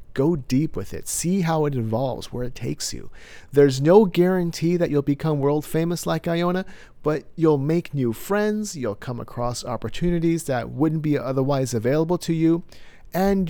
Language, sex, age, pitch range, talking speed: English, male, 40-59, 115-165 Hz, 175 wpm